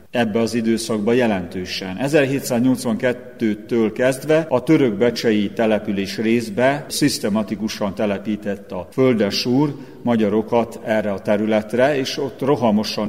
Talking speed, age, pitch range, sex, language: 100 wpm, 50-69, 115-135 Hz, male, Hungarian